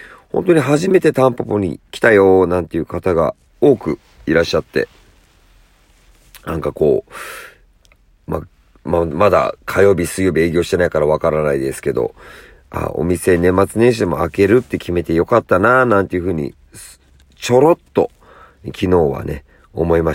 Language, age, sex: Japanese, 40-59, male